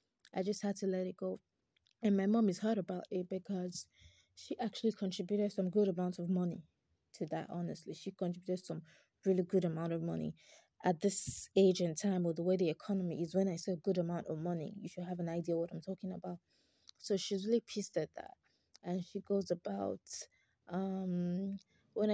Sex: female